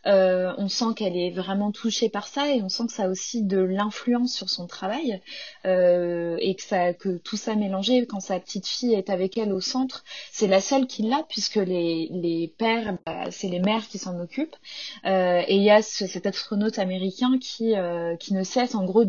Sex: female